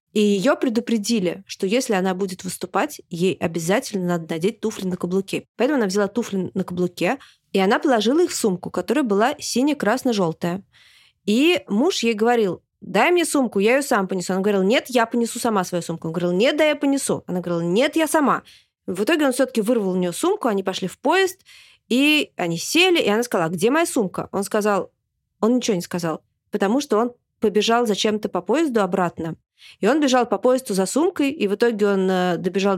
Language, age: Russian, 20-39